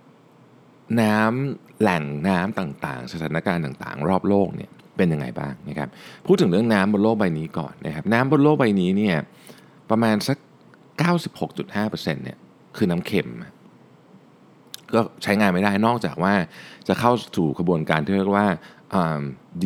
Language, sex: Thai, male